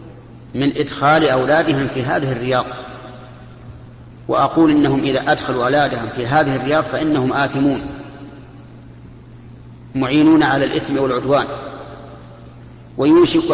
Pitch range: 120-150 Hz